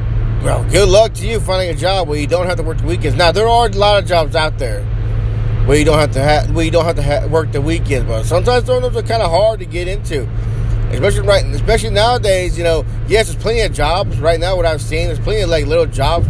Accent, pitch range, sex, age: American, 110-130 Hz, male, 30-49